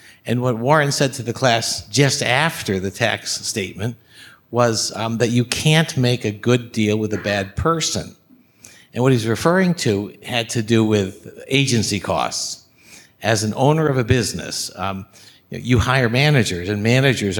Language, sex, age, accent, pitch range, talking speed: English, male, 50-69, American, 100-125 Hz, 165 wpm